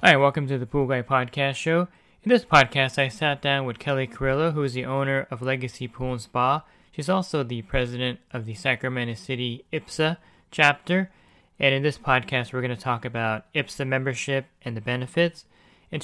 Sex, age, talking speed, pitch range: male, 20-39, 190 wpm, 125-150 Hz